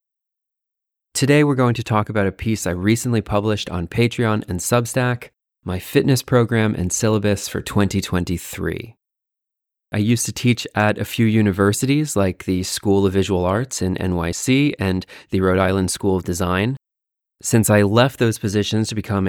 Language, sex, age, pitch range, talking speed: English, male, 30-49, 95-115 Hz, 160 wpm